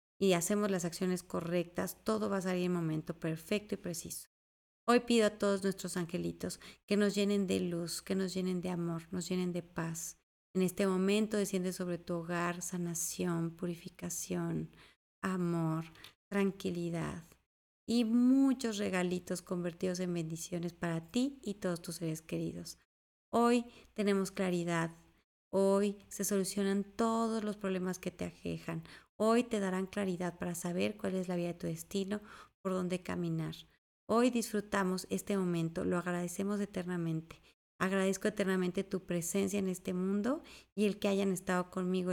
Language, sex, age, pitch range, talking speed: Spanish, female, 30-49, 175-205 Hz, 150 wpm